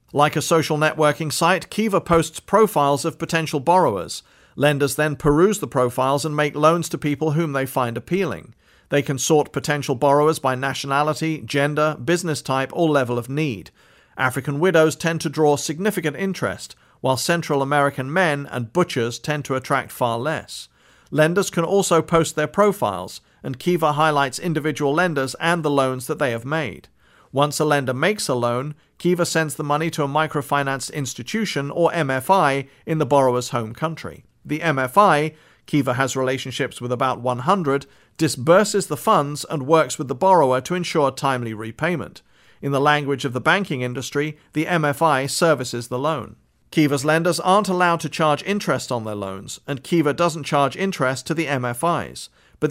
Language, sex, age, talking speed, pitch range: English, male, 50-69, 165 wpm, 135-165 Hz